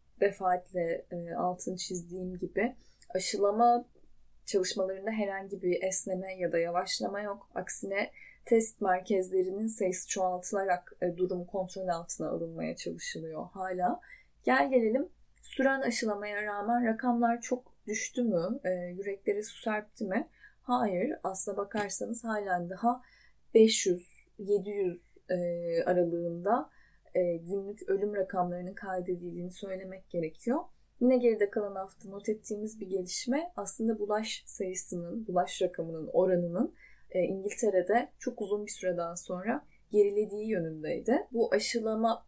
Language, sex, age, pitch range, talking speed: Turkish, female, 10-29, 185-230 Hz, 115 wpm